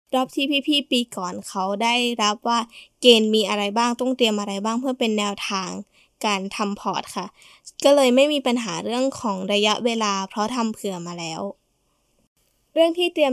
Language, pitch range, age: Thai, 200-245 Hz, 10-29